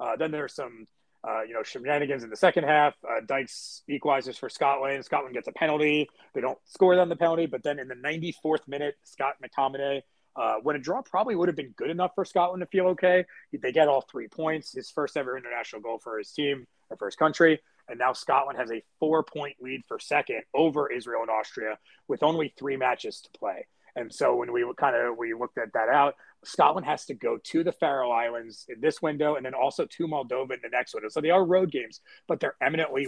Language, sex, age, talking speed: English, male, 30-49, 225 wpm